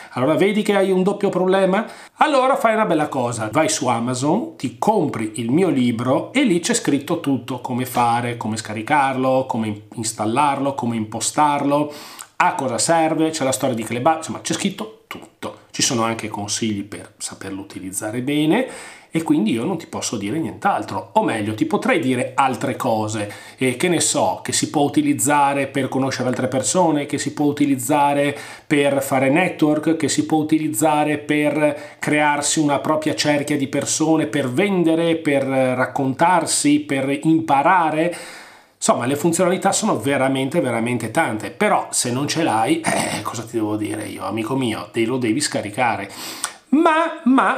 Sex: male